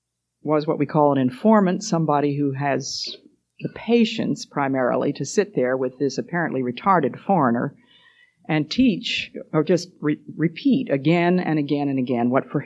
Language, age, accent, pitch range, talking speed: English, 50-69, American, 130-175 Hz, 155 wpm